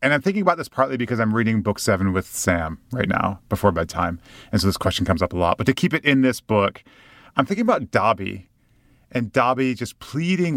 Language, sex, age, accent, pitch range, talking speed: English, male, 30-49, American, 100-135 Hz, 225 wpm